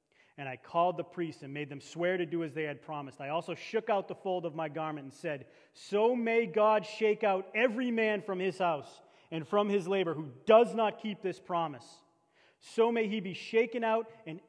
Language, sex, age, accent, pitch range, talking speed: English, male, 30-49, American, 150-225 Hz, 220 wpm